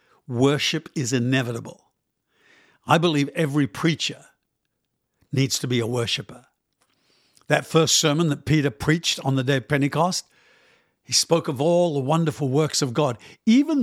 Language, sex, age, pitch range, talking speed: English, male, 60-79, 135-165 Hz, 145 wpm